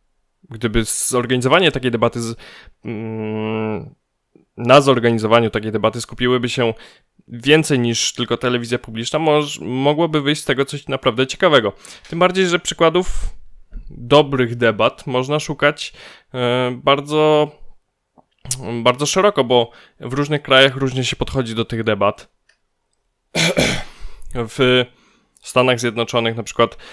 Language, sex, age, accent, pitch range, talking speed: Polish, male, 20-39, native, 110-130 Hz, 110 wpm